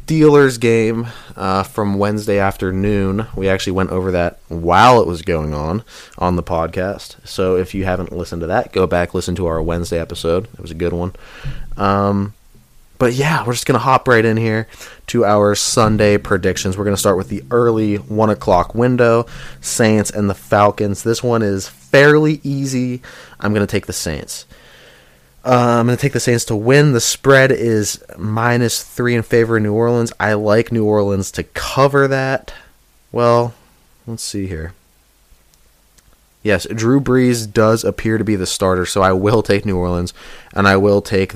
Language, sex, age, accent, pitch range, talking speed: English, male, 20-39, American, 95-120 Hz, 185 wpm